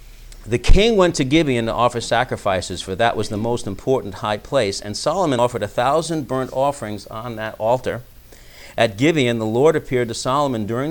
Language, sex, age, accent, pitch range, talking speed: English, male, 50-69, American, 105-145 Hz, 185 wpm